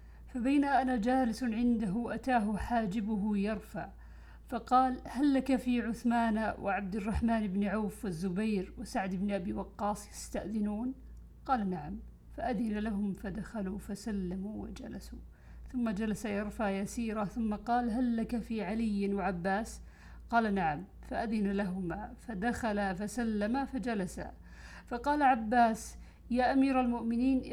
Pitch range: 200-245 Hz